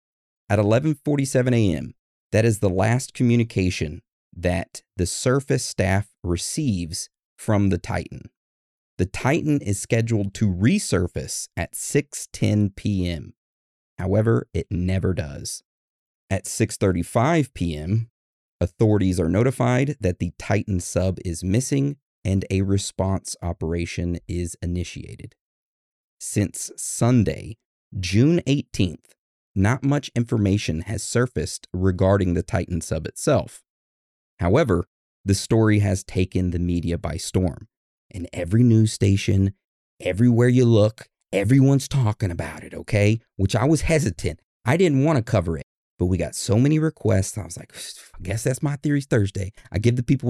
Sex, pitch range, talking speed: male, 90-120 Hz, 130 wpm